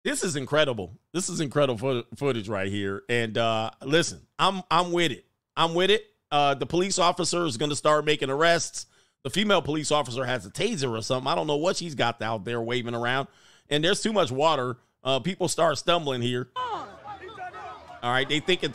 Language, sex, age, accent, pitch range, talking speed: English, male, 40-59, American, 125-175 Hz, 195 wpm